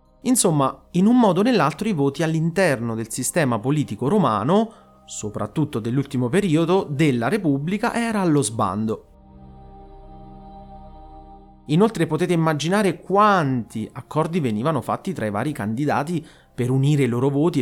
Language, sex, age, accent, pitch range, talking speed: Italian, male, 30-49, native, 120-175 Hz, 125 wpm